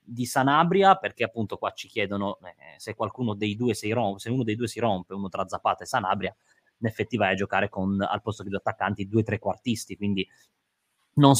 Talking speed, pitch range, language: 215 wpm, 105-125 Hz, Italian